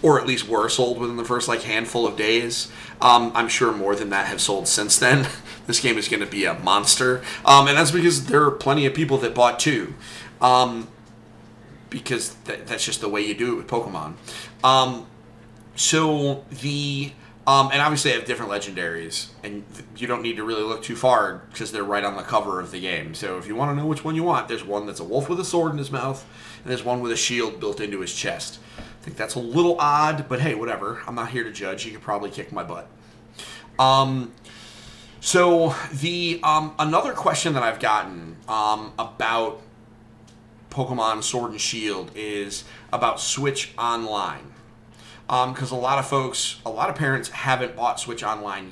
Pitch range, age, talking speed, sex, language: 110-135 Hz, 30-49, 205 wpm, male, English